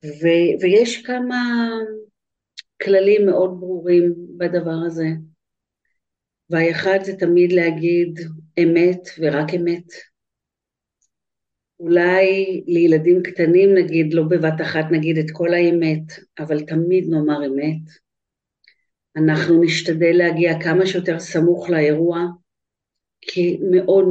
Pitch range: 155-180 Hz